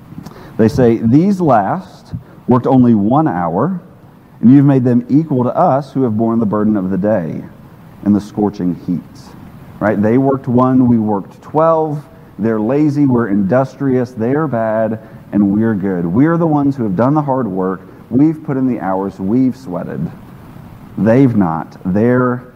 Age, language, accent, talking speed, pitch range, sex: 40-59, English, American, 165 wpm, 110-140 Hz, male